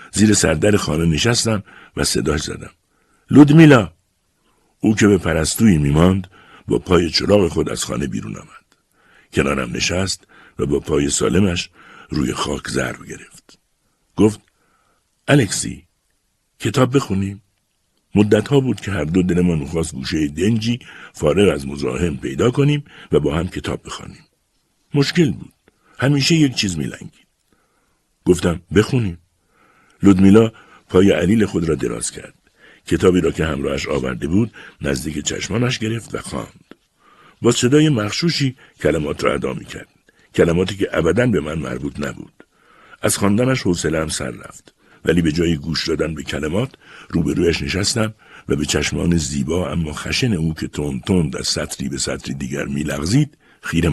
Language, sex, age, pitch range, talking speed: Persian, male, 60-79, 80-115 Hz, 140 wpm